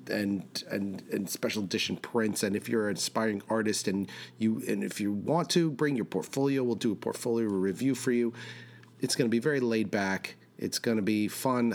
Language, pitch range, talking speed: English, 95-120 Hz, 210 wpm